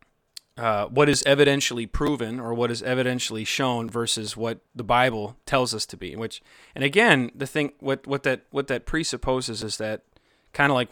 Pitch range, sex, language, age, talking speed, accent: 105-125 Hz, male, English, 30-49, 185 wpm, American